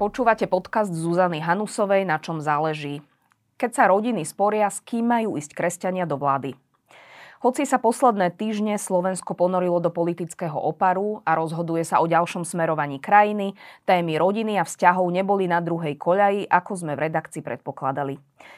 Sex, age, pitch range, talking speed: female, 20-39, 155-195 Hz, 145 wpm